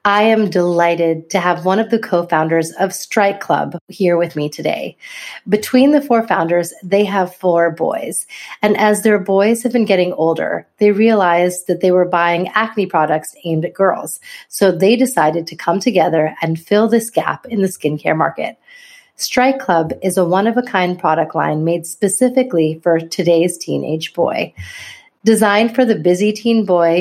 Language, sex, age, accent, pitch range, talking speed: English, female, 30-49, American, 170-220 Hz, 170 wpm